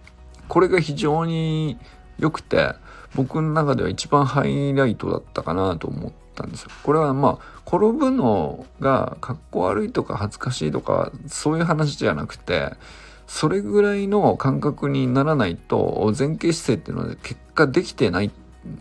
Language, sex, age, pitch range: Japanese, male, 50-69, 95-155 Hz